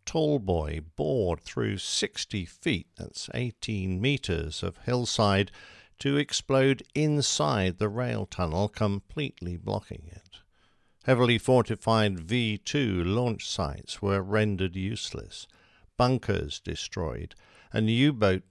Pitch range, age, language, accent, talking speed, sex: 90-115 Hz, 50-69, English, British, 100 wpm, male